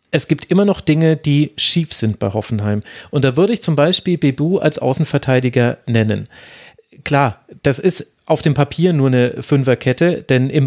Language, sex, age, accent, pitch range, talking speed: German, male, 30-49, German, 130-160 Hz, 175 wpm